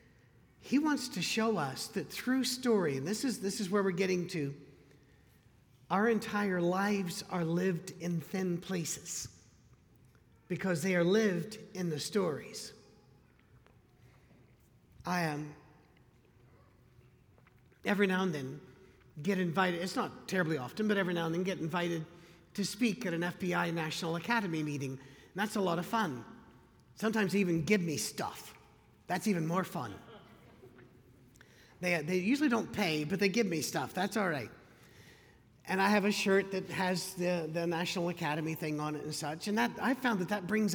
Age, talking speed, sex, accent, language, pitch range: 50-69, 165 wpm, male, American, English, 155-200 Hz